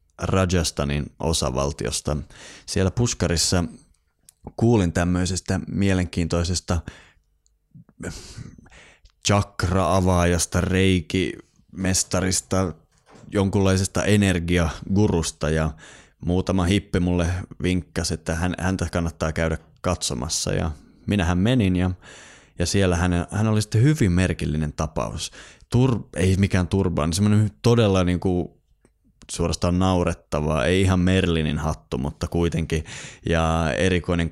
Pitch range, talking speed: 80-95 Hz, 90 wpm